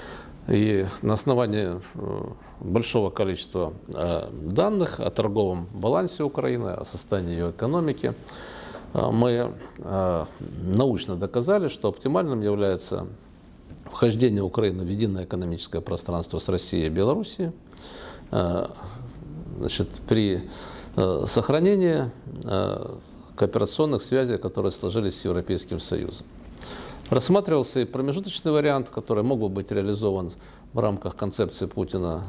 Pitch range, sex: 90-125 Hz, male